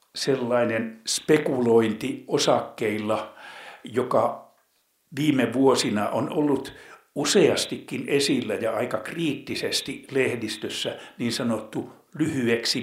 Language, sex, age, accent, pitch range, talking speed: Finnish, male, 60-79, native, 115-155 Hz, 80 wpm